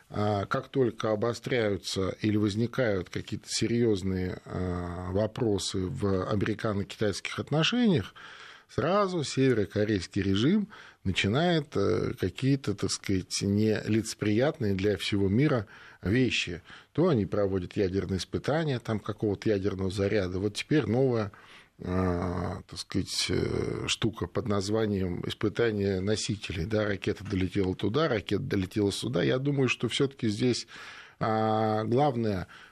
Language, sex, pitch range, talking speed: Russian, male, 100-115 Hz, 100 wpm